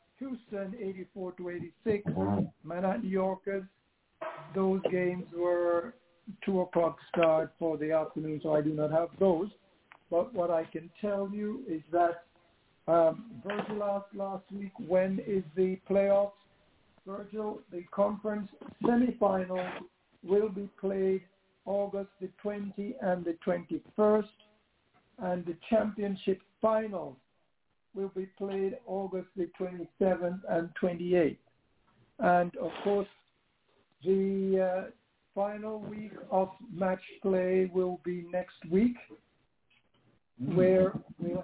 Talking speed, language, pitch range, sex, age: 115 wpm, English, 175-200 Hz, male, 60-79